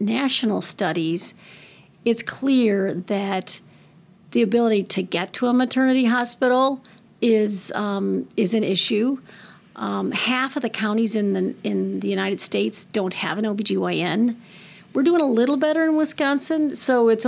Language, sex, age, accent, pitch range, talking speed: English, female, 40-59, American, 195-235 Hz, 145 wpm